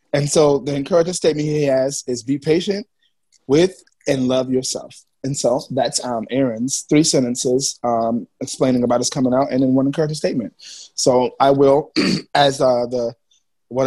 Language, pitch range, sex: English, 130-160 Hz, male